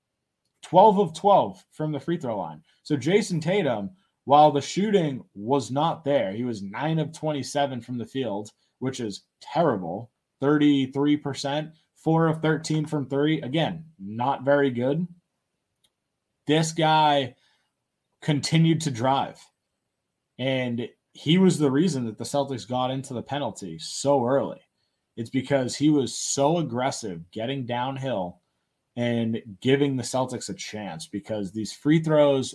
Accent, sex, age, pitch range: American, male, 20-39, 120-155 Hz